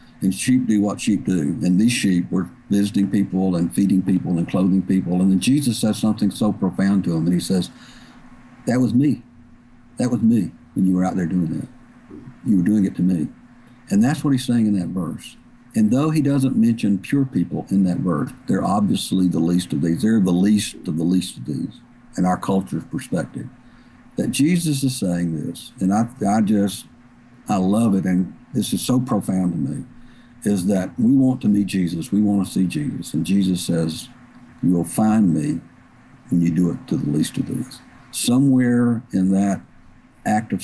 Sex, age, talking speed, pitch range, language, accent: male, 60-79, 200 wpm, 90-120 Hz, English, American